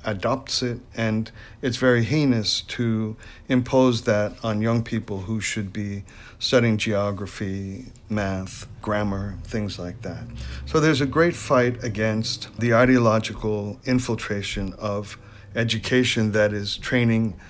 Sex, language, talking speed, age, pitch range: male, English, 125 wpm, 50-69, 105-125 Hz